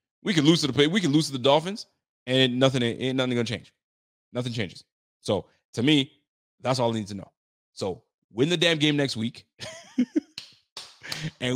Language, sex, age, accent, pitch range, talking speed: English, male, 30-49, American, 115-155 Hz, 190 wpm